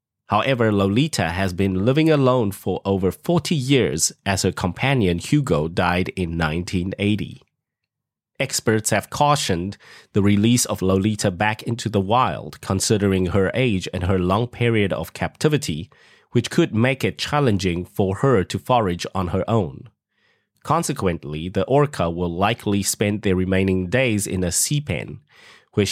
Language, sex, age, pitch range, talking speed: English, male, 30-49, 95-120 Hz, 145 wpm